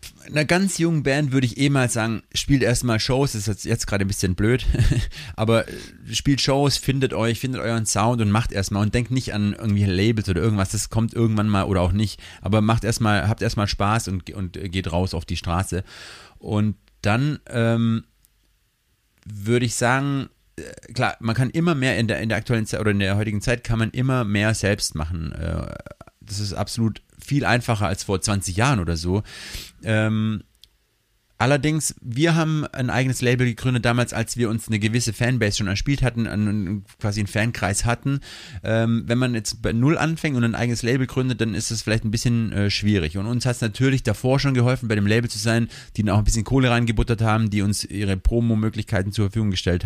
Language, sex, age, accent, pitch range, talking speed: German, male, 30-49, German, 100-125 Hz, 205 wpm